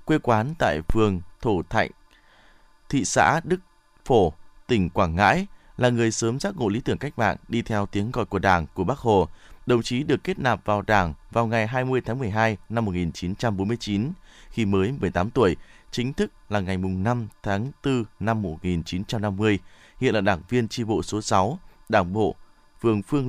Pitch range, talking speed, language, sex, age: 100-130 Hz, 220 wpm, Vietnamese, male, 20-39